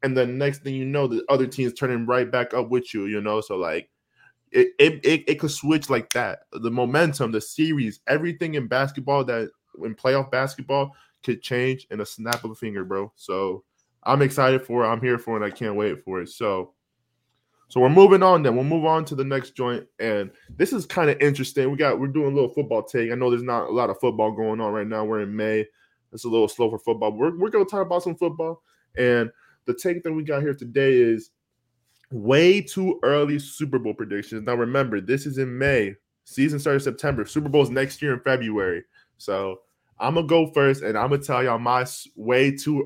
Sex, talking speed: male, 235 wpm